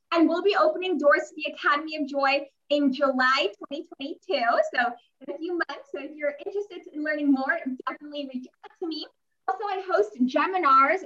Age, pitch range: 20-39, 275-355 Hz